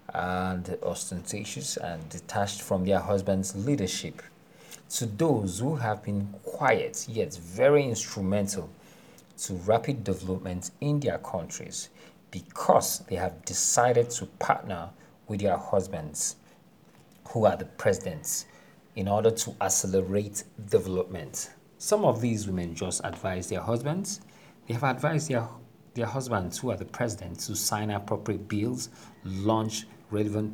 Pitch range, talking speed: 95-120 Hz, 130 wpm